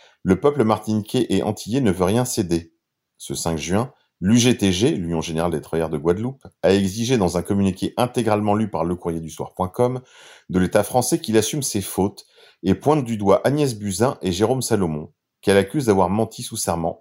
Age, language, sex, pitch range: 40-59, French, male, 90-130 Hz